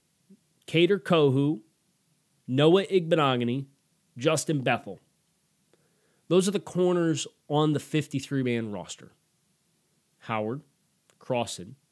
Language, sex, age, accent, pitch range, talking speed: English, male, 30-49, American, 120-170 Hz, 80 wpm